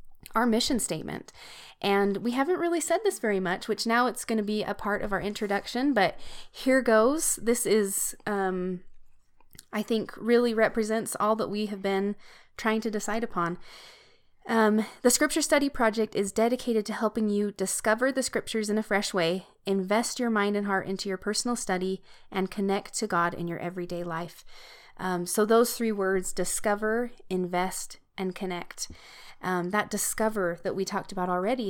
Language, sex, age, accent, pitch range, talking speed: English, female, 20-39, American, 190-225 Hz, 175 wpm